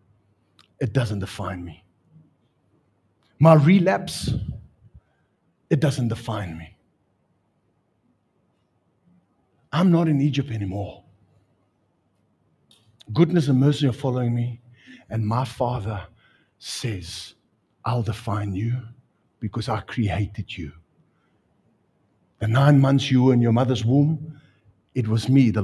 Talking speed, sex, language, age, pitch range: 105 wpm, male, English, 60-79, 100-125 Hz